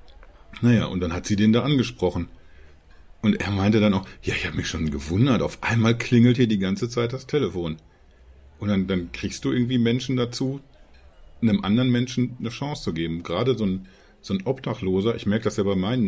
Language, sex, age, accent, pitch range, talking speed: German, male, 40-59, German, 90-120 Hz, 200 wpm